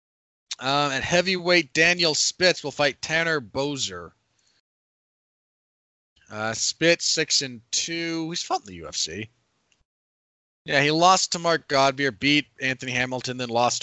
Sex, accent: male, American